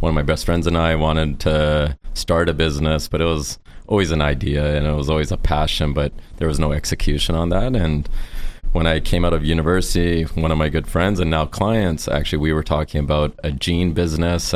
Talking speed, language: 225 wpm, English